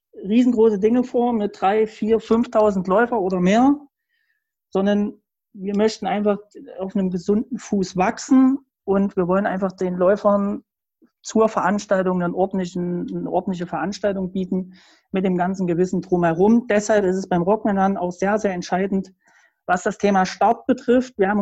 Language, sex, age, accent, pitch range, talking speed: German, male, 40-59, German, 180-215 Hz, 150 wpm